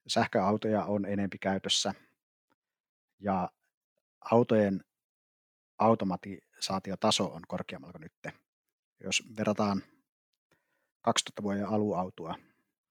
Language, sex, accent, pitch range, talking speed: Finnish, male, native, 95-105 Hz, 75 wpm